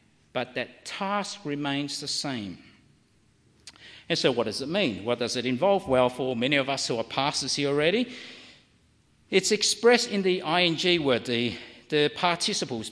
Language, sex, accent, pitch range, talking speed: English, male, Australian, 140-205 Hz, 165 wpm